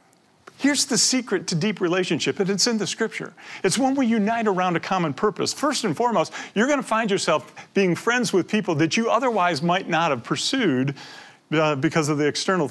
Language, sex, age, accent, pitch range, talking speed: English, male, 40-59, American, 135-185 Hz, 200 wpm